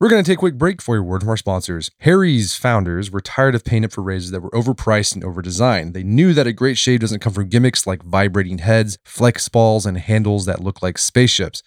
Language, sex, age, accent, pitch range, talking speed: English, male, 20-39, American, 95-120 Hz, 245 wpm